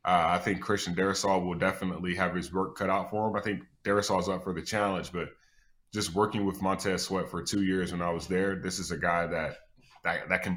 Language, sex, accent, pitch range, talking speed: English, male, American, 90-100 Hz, 240 wpm